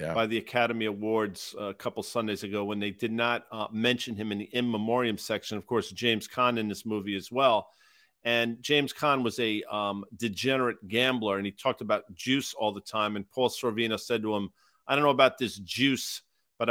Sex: male